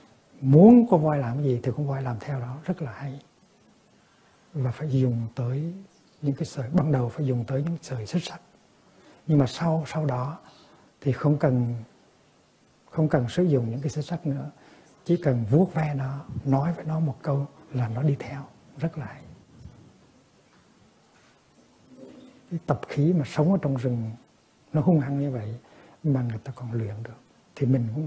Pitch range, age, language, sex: 125-155 Hz, 60-79, Vietnamese, male